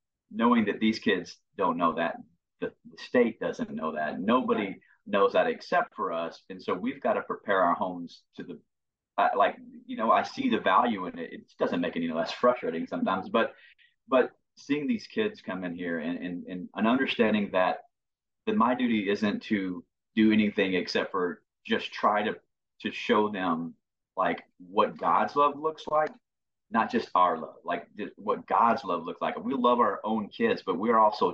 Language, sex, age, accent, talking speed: English, male, 30-49, American, 195 wpm